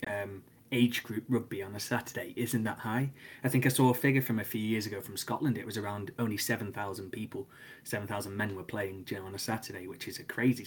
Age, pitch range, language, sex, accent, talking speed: 20-39, 100-120 Hz, English, male, British, 255 wpm